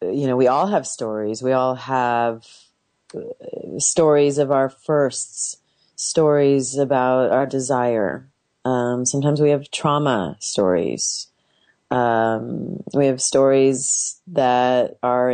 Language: English